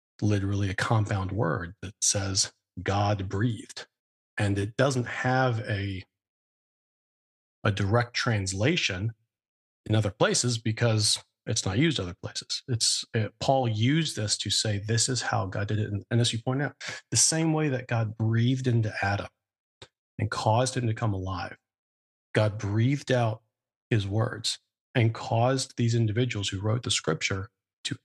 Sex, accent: male, American